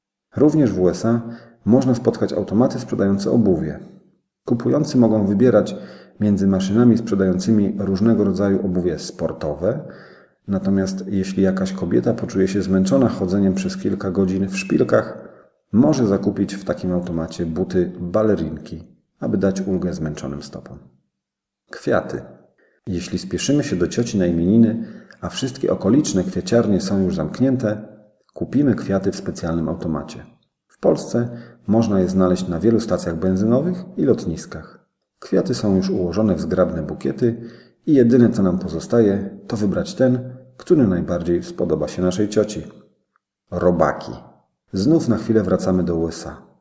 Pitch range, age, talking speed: 90-115 Hz, 40-59, 130 wpm